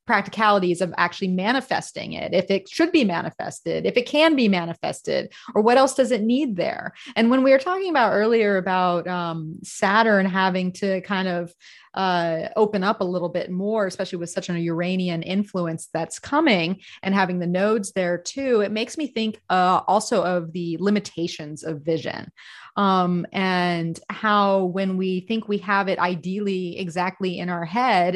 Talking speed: 175 wpm